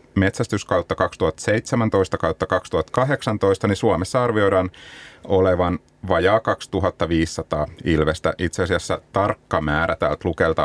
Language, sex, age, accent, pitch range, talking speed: Finnish, male, 30-49, native, 80-105 Hz, 95 wpm